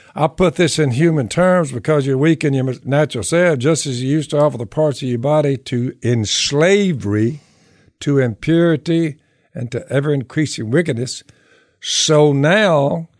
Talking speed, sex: 155 wpm, male